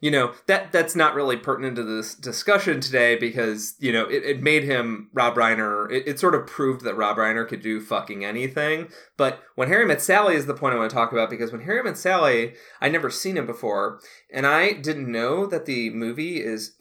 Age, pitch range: 30-49, 110-150 Hz